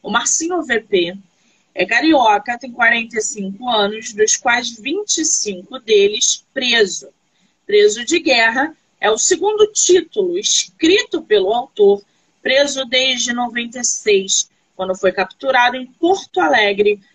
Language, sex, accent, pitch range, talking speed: Portuguese, female, Brazilian, 210-295 Hz, 110 wpm